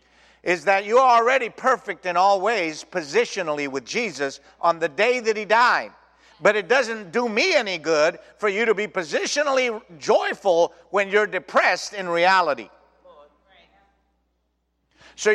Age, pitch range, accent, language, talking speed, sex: 50-69, 150-230 Hz, American, English, 140 wpm, male